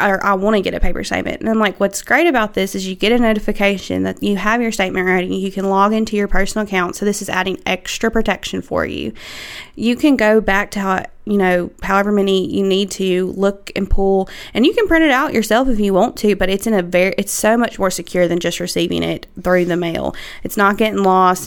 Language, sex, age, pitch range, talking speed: English, female, 20-39, 190-215 Hz, 250 wpm